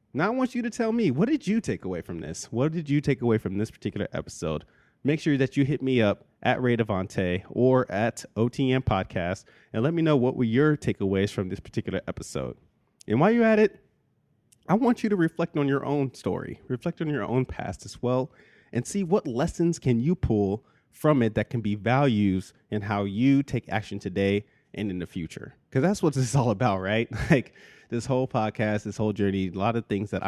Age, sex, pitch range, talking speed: 30-49, male, 100-130 Hz, 220 wpm